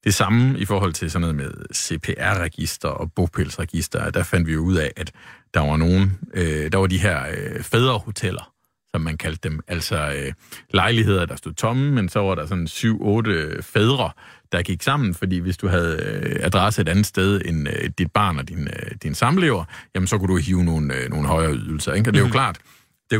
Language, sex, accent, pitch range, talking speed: Danish, male, native, 85-110 Hz, 195 wpm